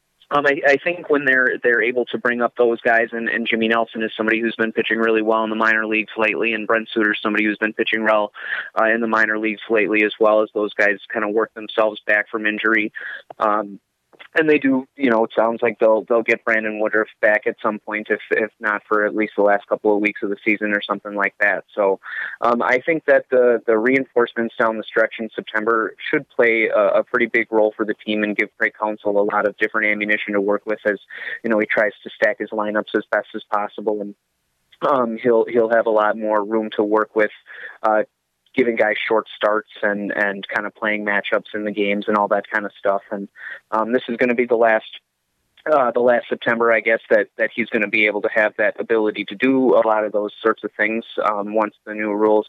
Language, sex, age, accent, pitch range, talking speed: English, male, 20-39, American, 105-115 Hz, 240 wpm